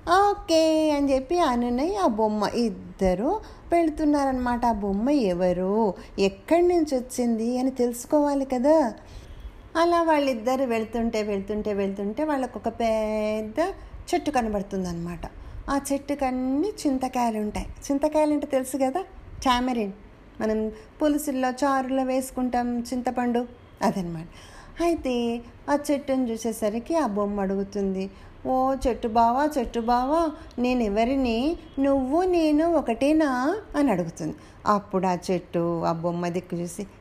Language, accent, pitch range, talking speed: Telugu, native, 215-305 Hz, 105 wpm